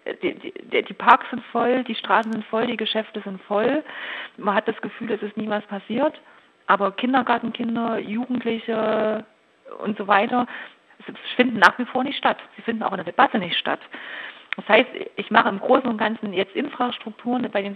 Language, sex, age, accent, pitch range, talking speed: German, female, 40-59, German, 195-225 Hz, 190 wpm